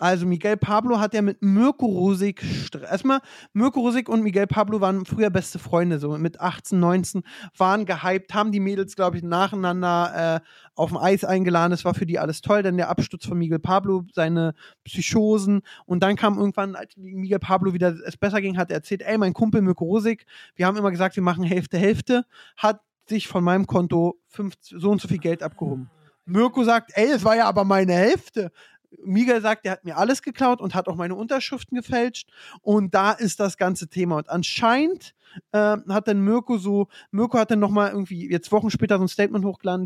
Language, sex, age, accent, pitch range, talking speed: German, male, 20-39, German, 180-215 Hz, 205 wpm